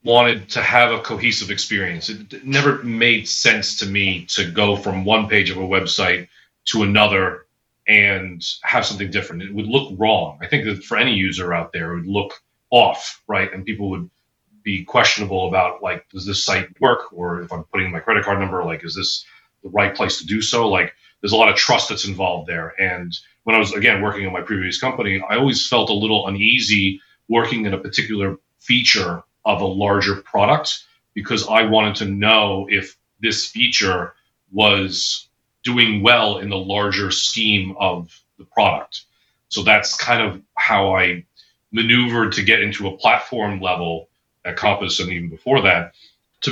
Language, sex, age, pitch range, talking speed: English, male, 30-49, 95-110 Hz, 185 wpm